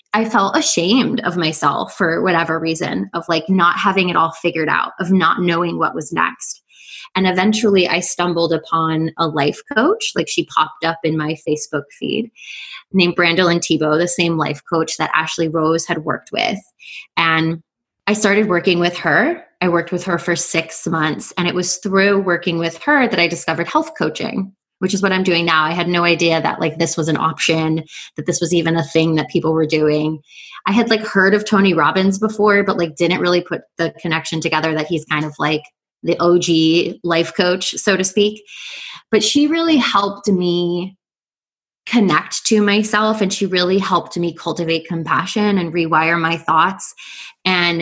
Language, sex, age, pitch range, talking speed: English, female, 20-39, 165-195 Hz, 190 wpm